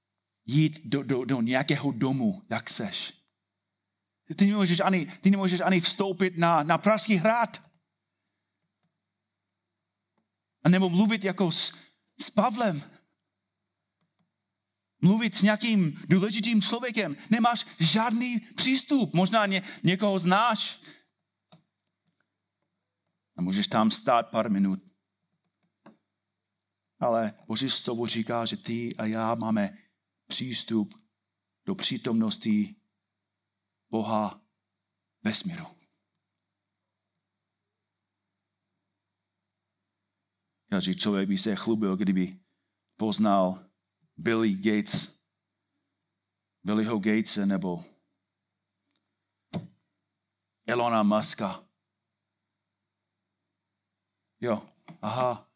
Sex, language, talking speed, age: male, Czech, 80 wpm, 40-59